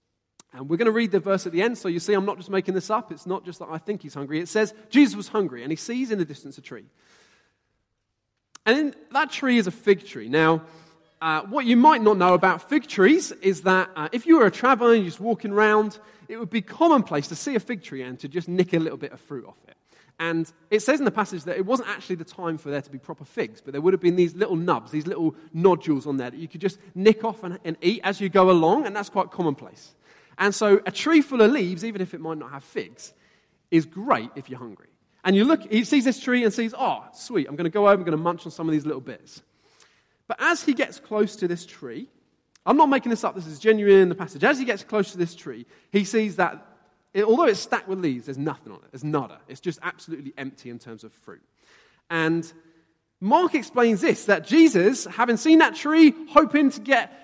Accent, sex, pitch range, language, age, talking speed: British, male, 160-220 Hz, English, 20-39, 255 wpm